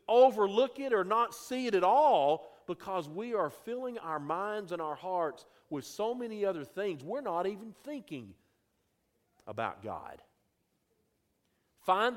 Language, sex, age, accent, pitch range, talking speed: English, male, 50-69, American, 115-195 Hz, 145 wpm